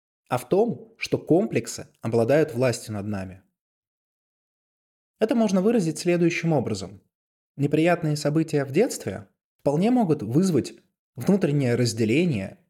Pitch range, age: 115-150 Hz, 20-39